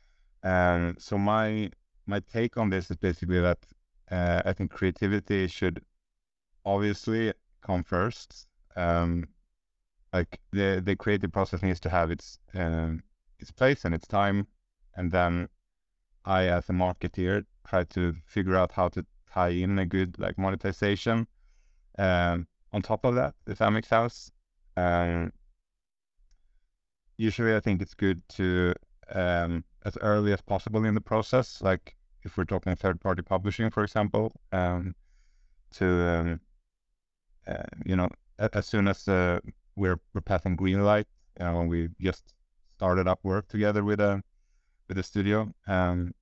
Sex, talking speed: male, 150 wpm